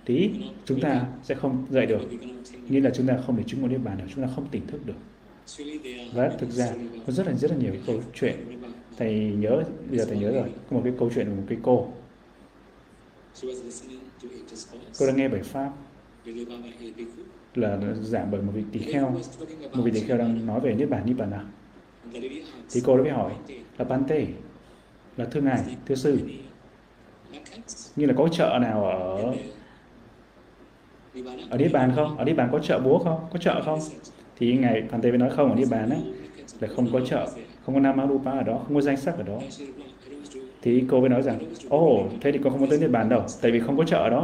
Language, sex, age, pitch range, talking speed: Vietnamese, male, 20-39, 120-140 Hz, 210 wpm